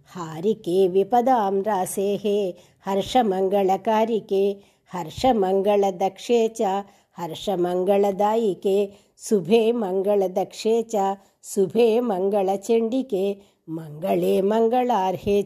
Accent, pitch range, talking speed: native, 190-220 Hz, 40 wpm